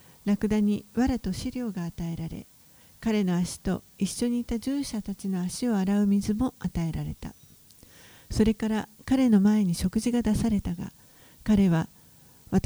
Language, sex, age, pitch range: Japanese, female, 50-69, 180-230 Hz